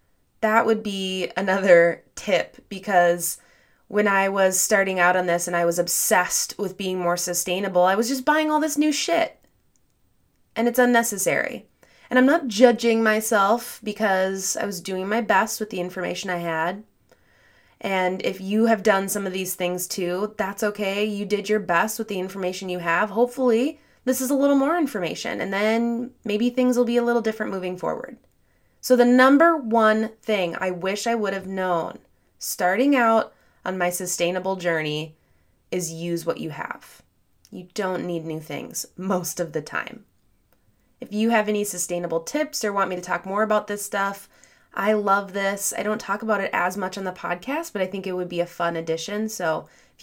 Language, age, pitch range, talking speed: English, 20-39, 180-225 Hz, 190 wpm